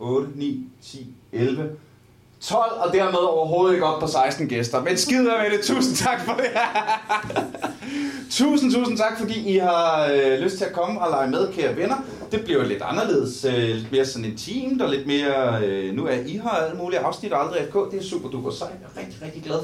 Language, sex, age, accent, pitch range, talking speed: Danish, male, 30-49, native, 140-230 Hz, 210 wpm